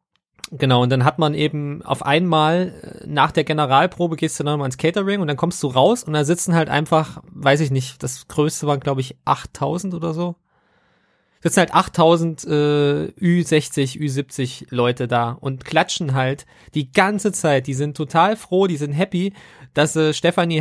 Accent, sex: German, male